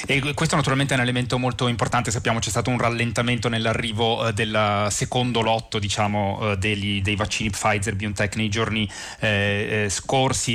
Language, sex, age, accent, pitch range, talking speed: Italian, male, 30-49, native, 105-120 Hz, 150 wpm